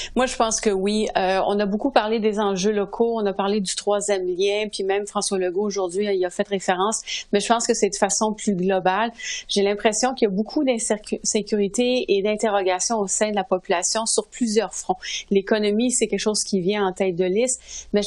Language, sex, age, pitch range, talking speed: French, female, 30-49, 195-230 Hz, 225 wpm